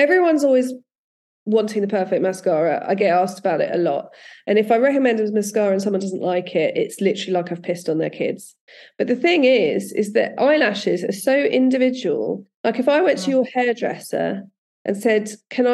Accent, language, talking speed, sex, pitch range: British, English, 200 wpm, female, 190-245 Hz